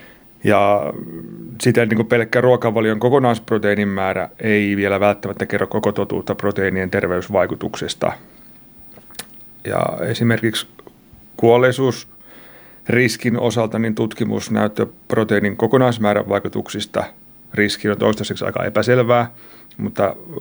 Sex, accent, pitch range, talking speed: male, native, 100-115 Hz, 90 wpm